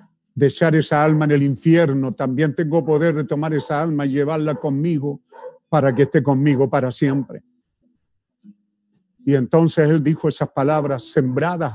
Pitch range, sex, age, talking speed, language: 130-180 Hz, male, 50-69, 150 wpm, Spanish